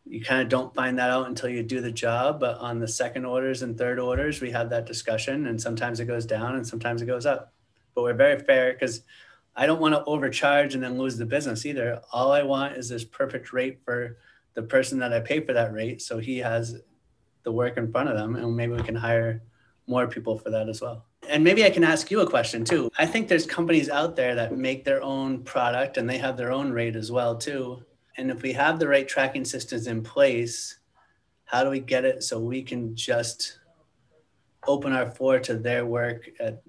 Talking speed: 230 wpm